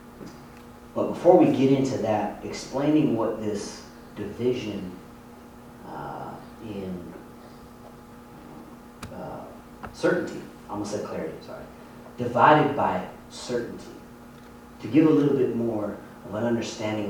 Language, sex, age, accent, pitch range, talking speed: English, male, 30-49, American, 105-150 Hz, 110 wpm